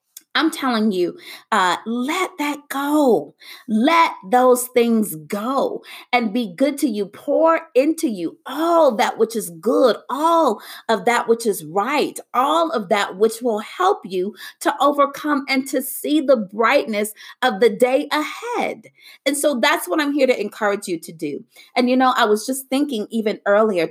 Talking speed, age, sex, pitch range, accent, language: 170 wpm, 30-49, female, 185-265 Hz, American, English